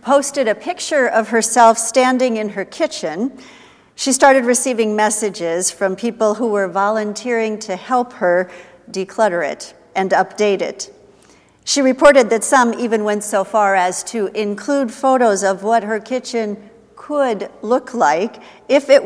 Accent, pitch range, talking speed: American, 190-235 Hz, 150 wpm